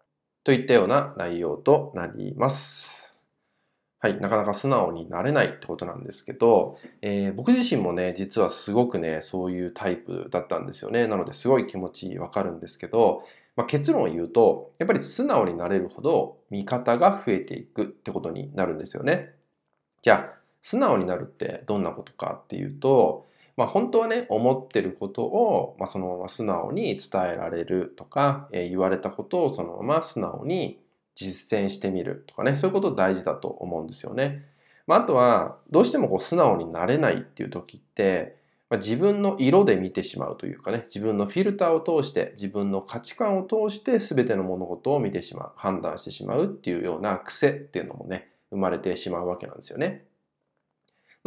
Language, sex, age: Japanese, male, 20-39